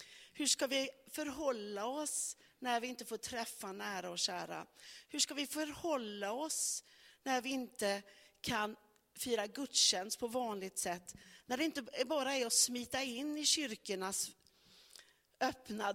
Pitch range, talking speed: 195-265 Hz, 145 wpm